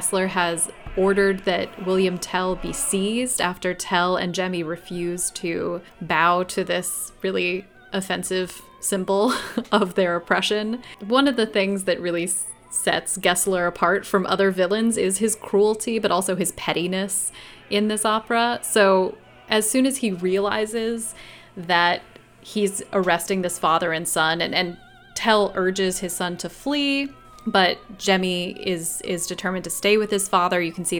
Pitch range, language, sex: 180-210 Hz, English, female